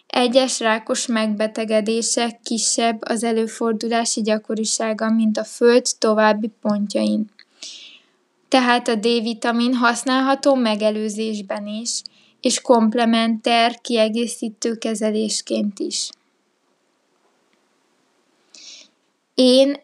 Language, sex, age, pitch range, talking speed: Hungarian, female, 20-39, 220-250 Hz, 75 wpm